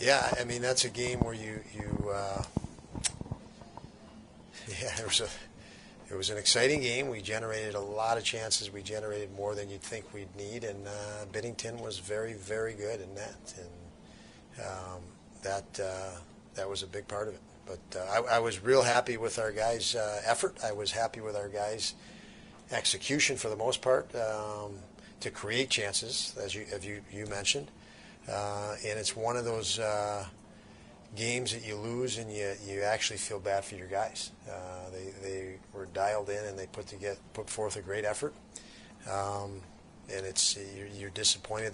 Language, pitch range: English, 100-110 Hz